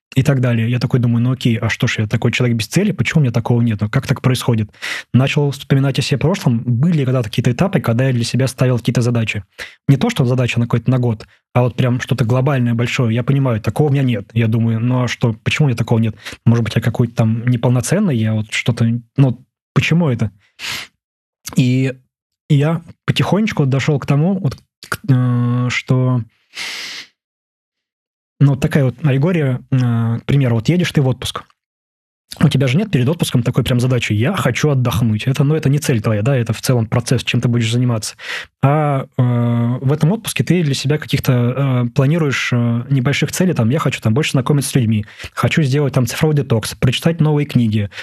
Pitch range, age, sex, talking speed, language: 120-145 Hz, 20-39, male, 205 wpm, Russian